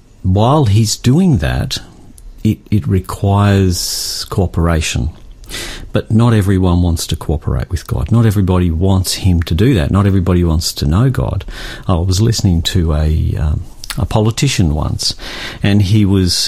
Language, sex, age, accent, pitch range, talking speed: English, male, 50-69, Australian, 85-110 Hz, 150 wpm